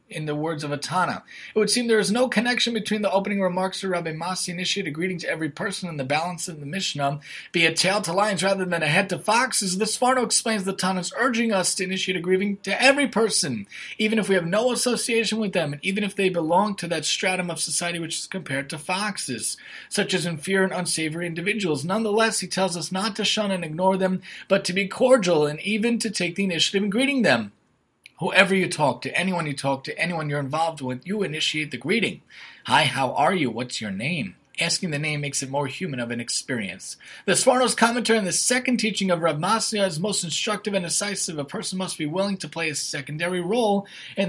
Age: 30-49